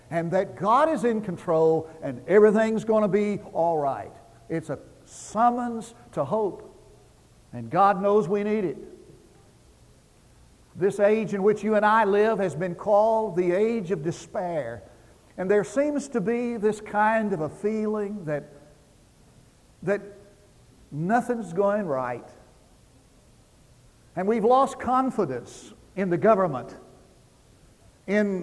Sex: male